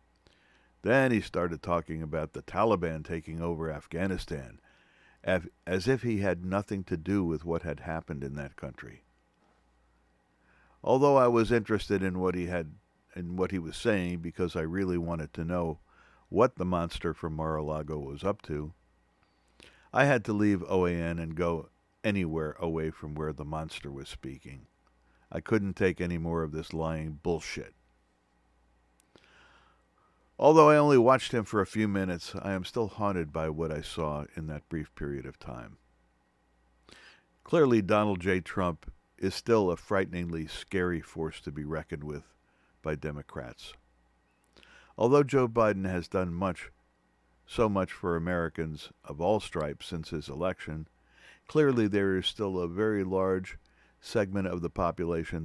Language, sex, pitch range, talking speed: English, male, 75-95 Hz, 155 wpm